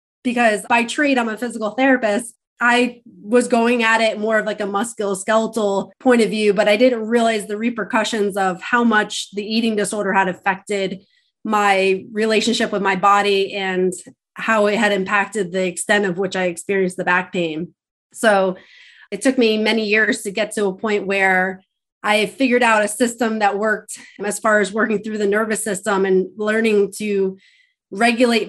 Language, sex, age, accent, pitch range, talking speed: English, female, 20-39, American, 195-225 Hz, 175 wpm